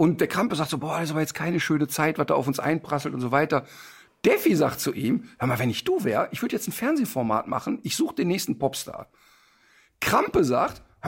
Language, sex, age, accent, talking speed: German, male, 50-69, German, 240 wpm